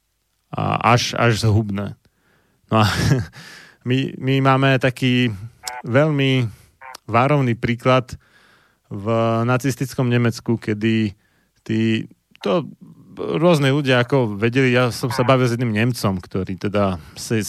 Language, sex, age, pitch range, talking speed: Slovak, male, 30-49, 110-130 Hz, 115 wpm